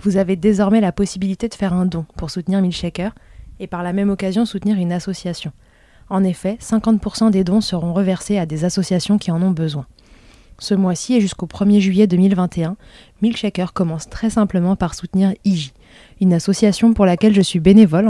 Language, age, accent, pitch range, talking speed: French, 20-39, French, 175-205 Hz, 180 wpm